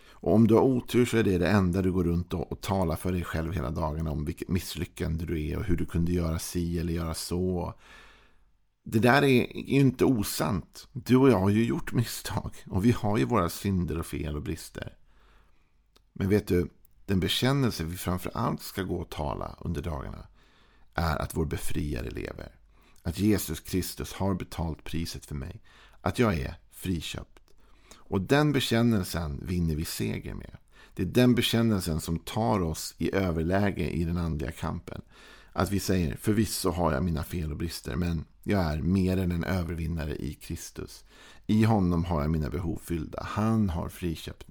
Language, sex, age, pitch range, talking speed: Swedish, male, 50-69, 80-105 Hz, 185 wpm